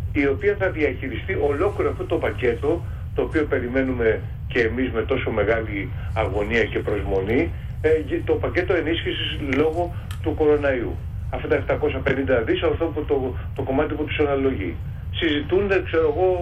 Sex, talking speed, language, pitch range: male, 145 wpm, Greek, 105-155 Hz